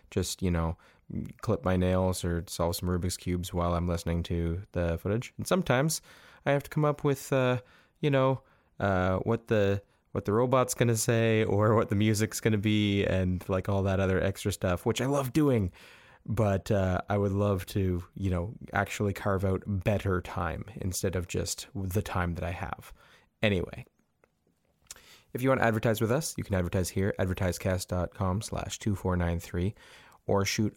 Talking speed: 180 wpm